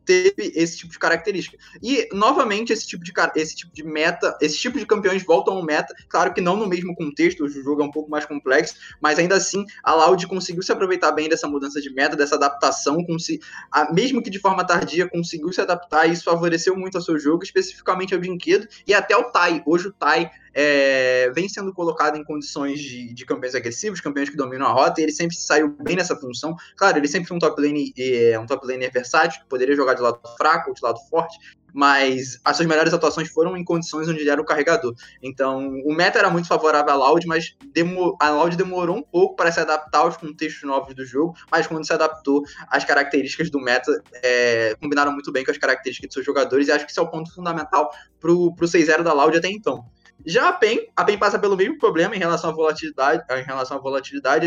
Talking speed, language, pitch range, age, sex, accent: 215 wpm, Portuguese, 145-180 Hz, 20-39, male, Brazilian